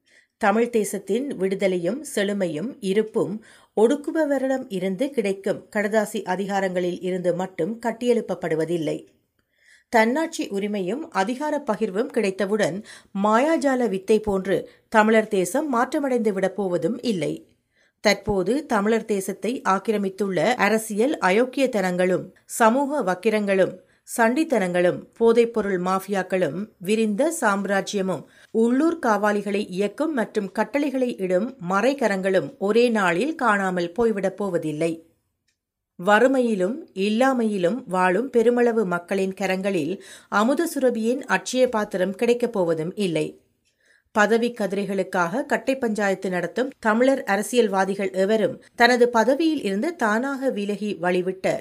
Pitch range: 190-240 Hz